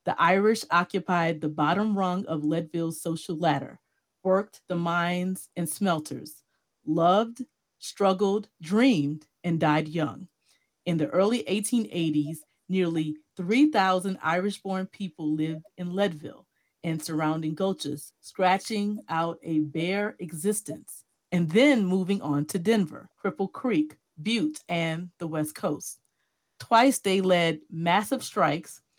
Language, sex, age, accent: English, female, 40-59, American